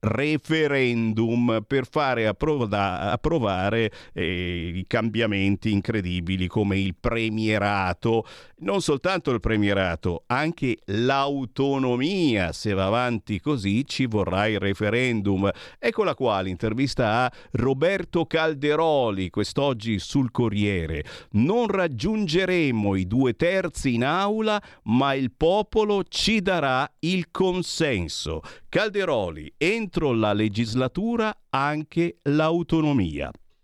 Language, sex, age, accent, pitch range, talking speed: Italian, male, 50-69, native, 100-160 Hz, 100 wpm